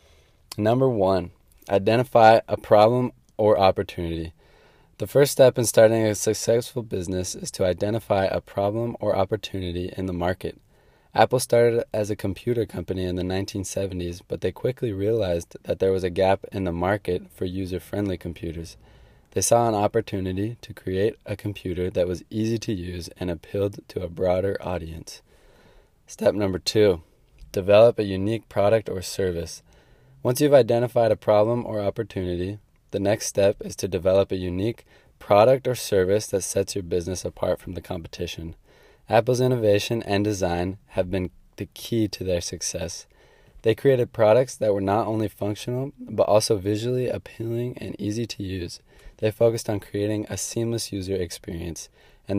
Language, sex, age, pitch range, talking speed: English, male, 20-39, 90-115 Hz, 160 wpm